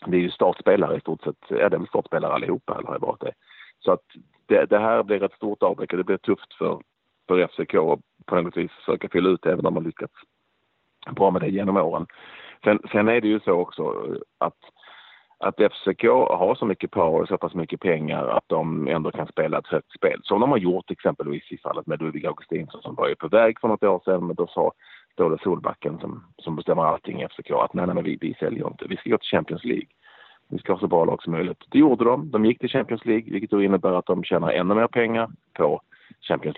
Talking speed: 235 wpm